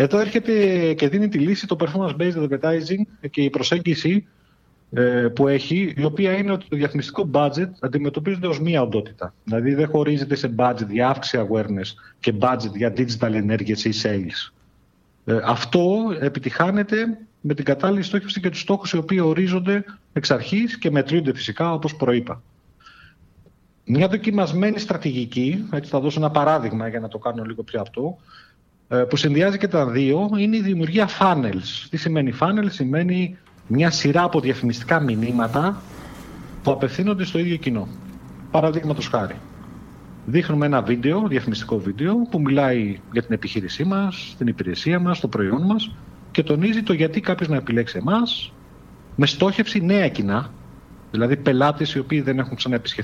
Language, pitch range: Greek, 120-185 Hz